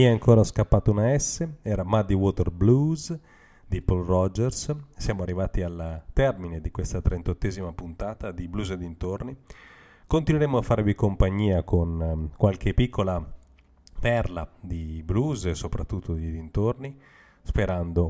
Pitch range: 90-110 Hz